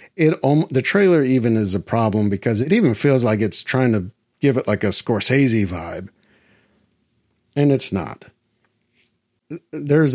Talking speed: 150 wpm